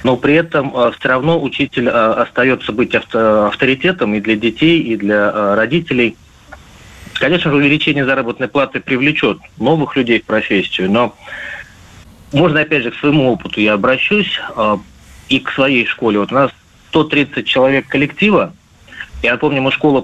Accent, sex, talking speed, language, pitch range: native, male, 140 wpm, Russian, 105-145 Hz